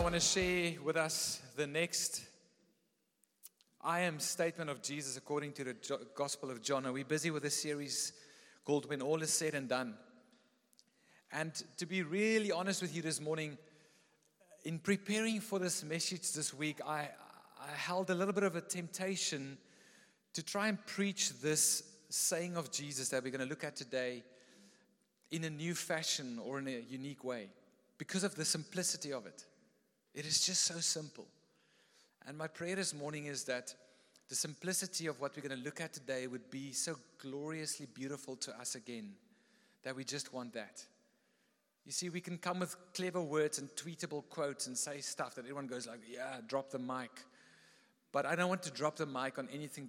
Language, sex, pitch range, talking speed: English, male, 135-175 Hz, 185 wpm